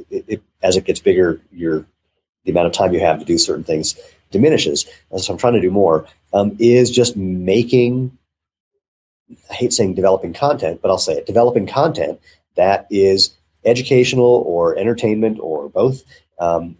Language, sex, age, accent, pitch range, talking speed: English, male, 40-59, American, 85-120 Hz, 165 wpm